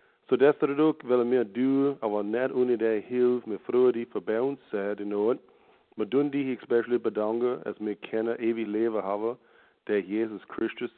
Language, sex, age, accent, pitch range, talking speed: English, male, 50-69, German, 105-125 Hz, 150 wpm